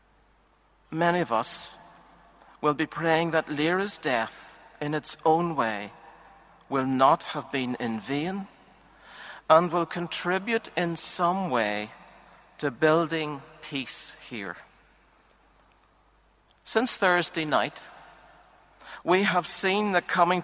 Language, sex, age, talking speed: English, male, 60-79, 110 wpm